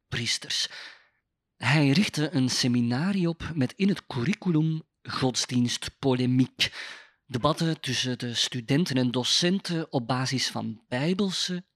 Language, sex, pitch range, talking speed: Dutch, male, 125-155 Hz, 105 wpm